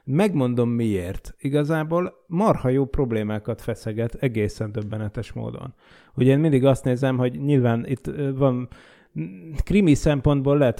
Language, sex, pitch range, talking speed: Hungarian, male, 115-135 Hz, 120 wpm